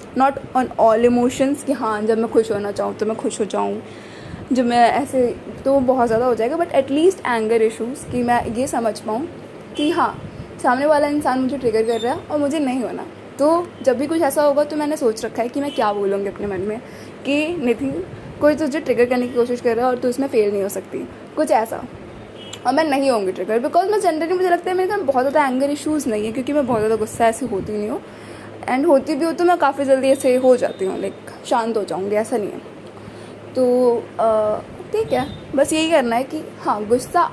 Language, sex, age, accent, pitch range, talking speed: Hindi, female, 20-39, native, 230-295 Hz, 230 wpm